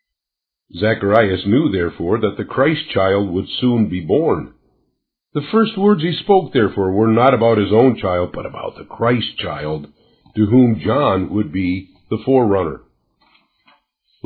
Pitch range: 100-135 Hz